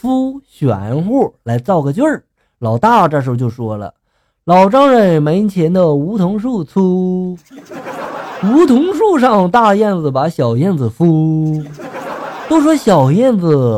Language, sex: Chinese, male